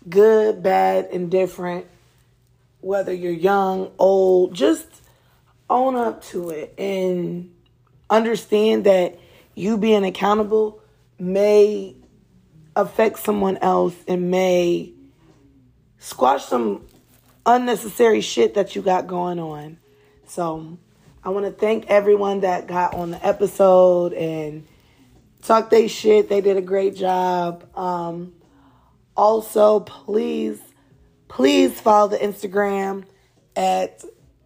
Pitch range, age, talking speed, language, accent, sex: 175-205 Hz, 20-39, 105 wpm, English, American, female